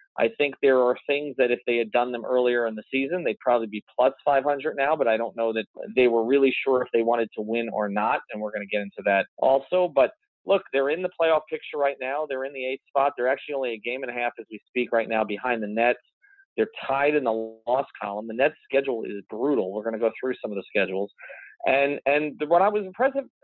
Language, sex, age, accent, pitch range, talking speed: English, male, 40-59, American, 115-160 Hz, 260 wpm